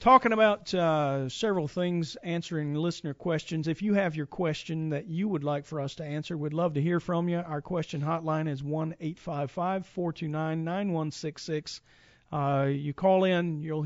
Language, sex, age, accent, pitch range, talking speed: English, male, 40-59, American, 145-175 Hz, 155 wpm